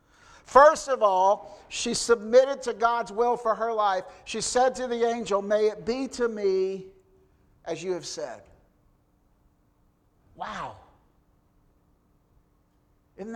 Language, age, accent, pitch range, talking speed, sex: English, 50-69, American, 180-235 Hz, 120 wpm, male